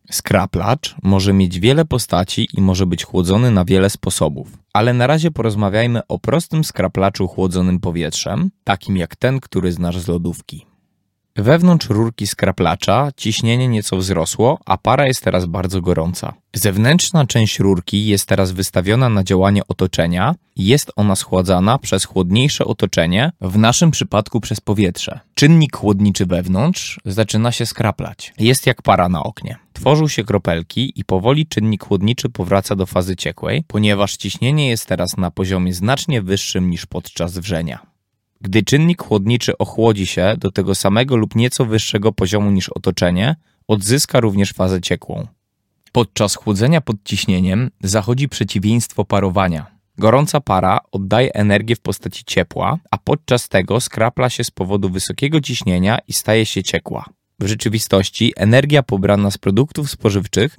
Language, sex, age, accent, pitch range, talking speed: Polish, male, 20-39, native, 95-120 Hz, 145 wpm